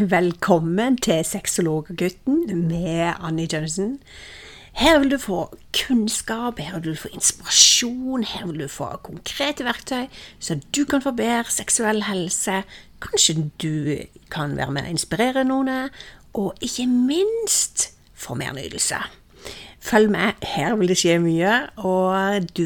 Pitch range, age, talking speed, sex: 160-235 Hz, 50-69, 135 wpm, female